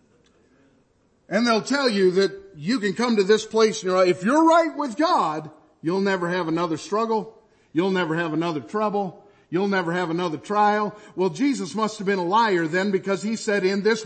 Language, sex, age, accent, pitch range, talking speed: English, male, 50-69, American, 155-210 Hz, 195 wpm